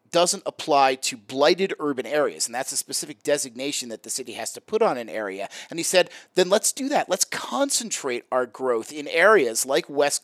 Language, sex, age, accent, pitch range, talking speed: English, male, 30-49, American, 130-190 Hz, 205 wpm